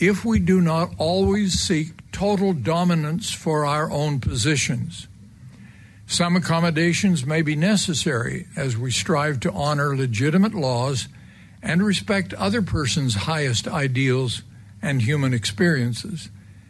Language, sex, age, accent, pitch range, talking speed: English, male, 60-79, American, 125-165 Hz, 120 wpm